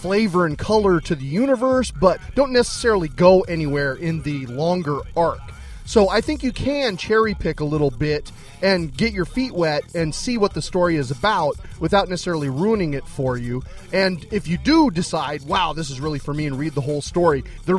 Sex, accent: male, American